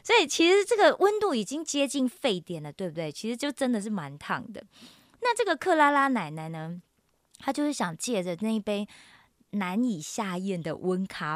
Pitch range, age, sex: 175-280 Hz, 20-39, female